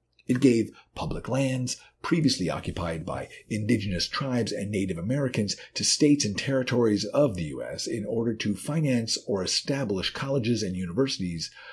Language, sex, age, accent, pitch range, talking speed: English, male, 50-69, American, 95-135 Hz, 145 wpm